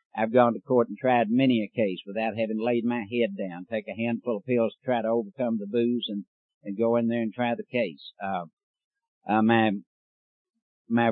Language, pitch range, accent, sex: English, 110-130 Hz, American, male